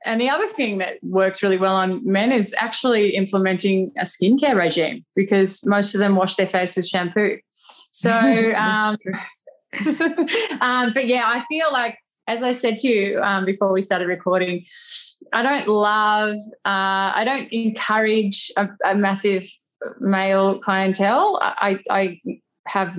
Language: English